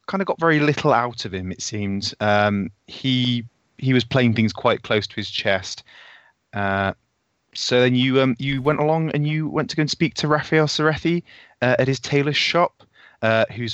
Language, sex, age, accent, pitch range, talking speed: English, male, 20-39, British, 110-135 Hz, 200 wpm